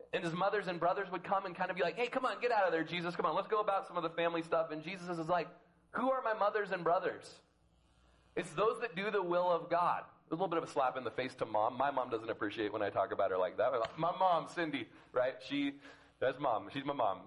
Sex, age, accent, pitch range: male, 30-49, American, 145-195 Hz